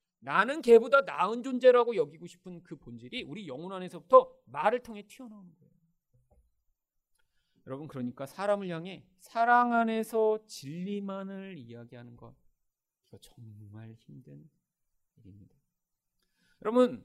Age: 40-59